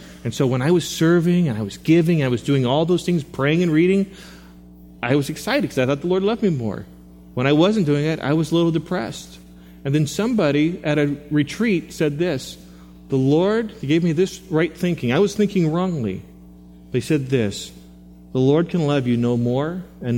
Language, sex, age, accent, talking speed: English, male, 40-59, American, 215 wpm